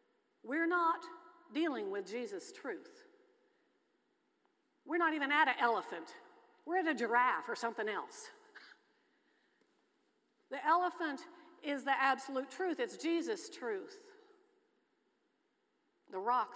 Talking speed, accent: 110 wpm, American